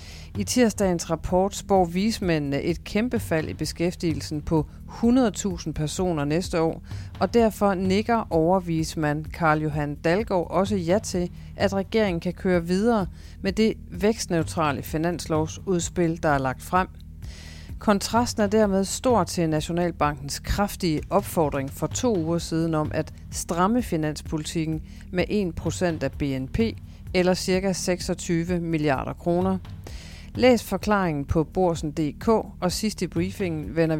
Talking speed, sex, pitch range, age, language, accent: 125 wpm, female, 150-190 Hz, 40-59, Danish, native